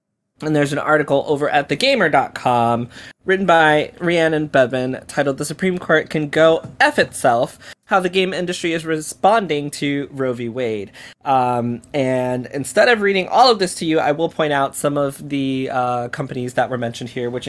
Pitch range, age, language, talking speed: 140-165 Hz, 20-39, English, 180 wpm